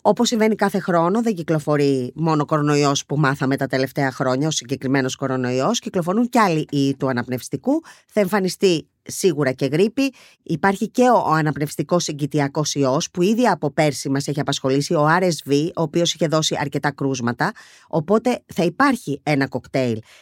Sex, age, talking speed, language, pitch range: female, 20-39, 160 wpm, Greek, 145-195 Hz